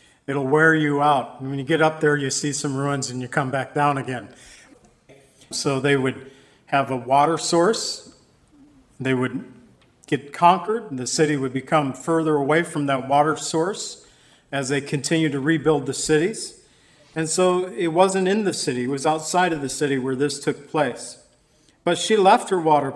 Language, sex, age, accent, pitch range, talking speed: English, male, 50-69, American, 140-175 Hz, 185 wpm